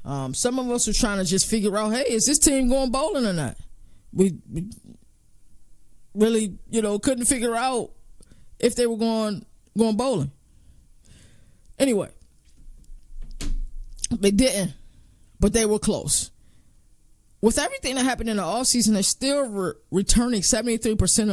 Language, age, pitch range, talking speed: English, 20-39, 180-240 Hz, 145 wpm